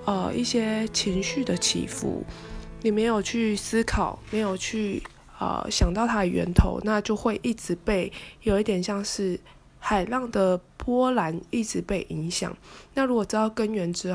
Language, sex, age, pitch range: Chinese, female, 20-39, 180-225 Hz